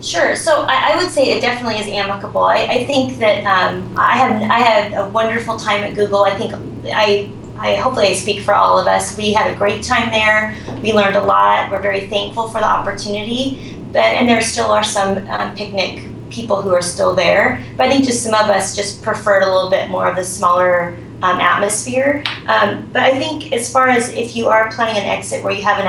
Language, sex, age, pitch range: English, female, 30-49, 180-220 Hz